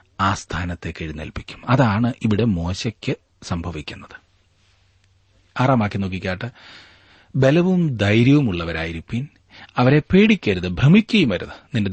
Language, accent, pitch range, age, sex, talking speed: Malayalam, native, 95-130 Hz, 40-59, male, 65 wpm